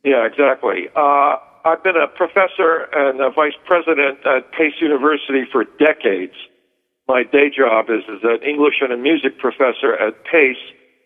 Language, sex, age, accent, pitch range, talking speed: English, male, 60-79, American, 125-150 Hz, 155 wpm